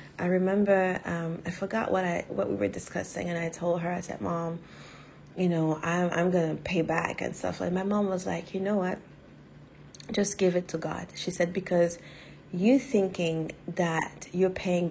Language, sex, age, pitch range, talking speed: English, female, 30-49, 175-210 Hz, 195 wpm